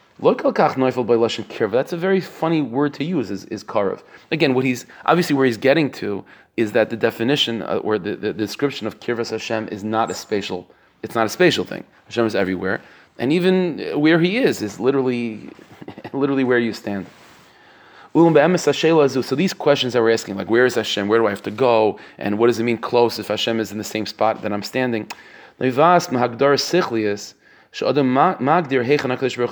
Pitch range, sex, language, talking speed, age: 115-145 Hz, male, English, 175 wpm, 30-49